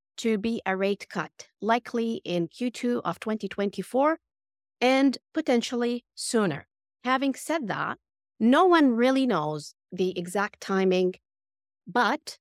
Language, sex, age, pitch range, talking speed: English, female, 40-59, 175-235 Hz, 115 wpm